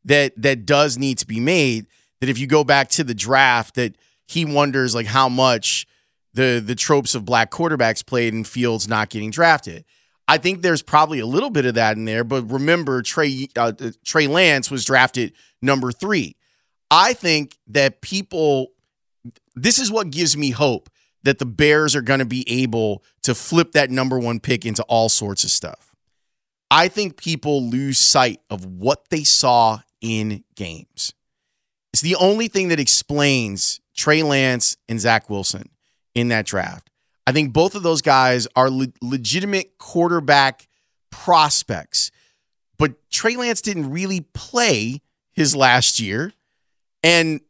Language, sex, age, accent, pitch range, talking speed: English, male, 30-49, American, 120-160 Hz, 160 wpm